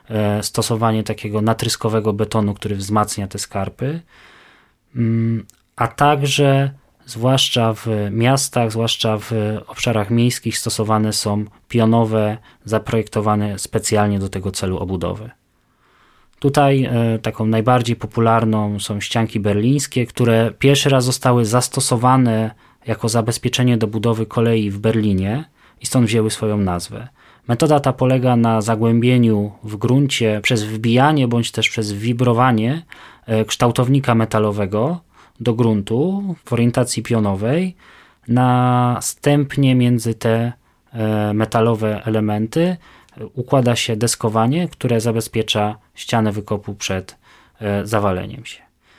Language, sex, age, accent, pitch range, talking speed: Polish, male, 20-39, native, 110-125 Hz, 105 wpm